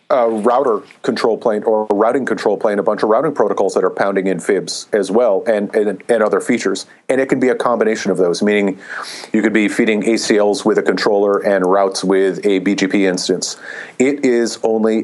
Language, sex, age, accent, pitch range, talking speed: English, male, 40-59, American, 100-115 Hz, 210 wpm